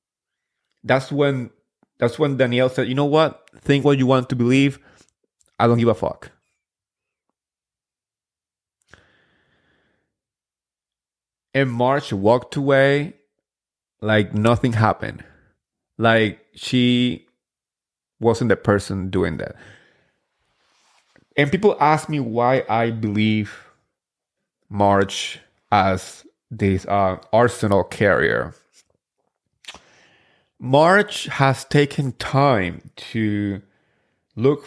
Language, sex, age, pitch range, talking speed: English, male, 30-49, 105-135 Hz, 90 wpm